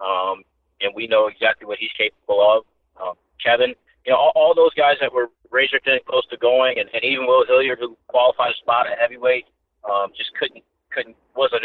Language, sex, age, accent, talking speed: English, male, 30-49, American, 210 wpm